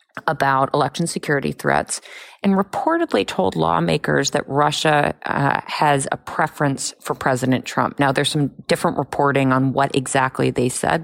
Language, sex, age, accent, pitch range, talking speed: English, female, 30-49, American, 135-170 Hz, 145 wpm